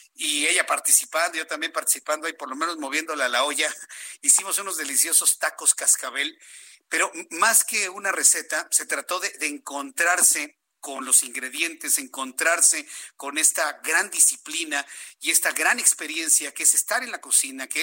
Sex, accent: male, Mexican